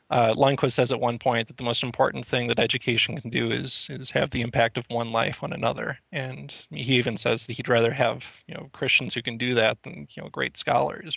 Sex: male